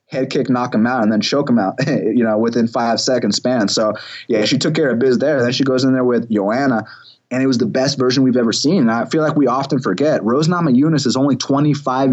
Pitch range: 120-140 Hz